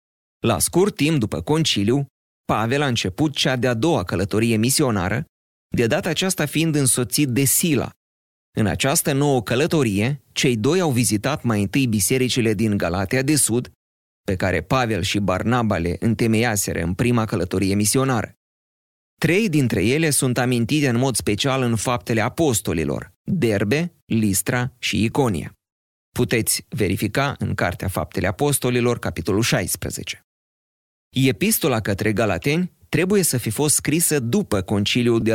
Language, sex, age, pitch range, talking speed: Romanian, male, 30-49, 105-140 Hz, 135 wpm